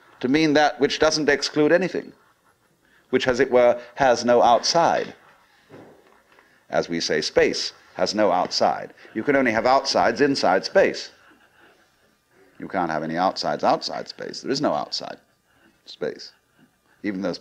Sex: male